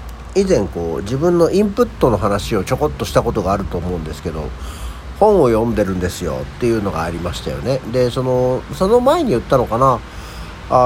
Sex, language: male, Japanese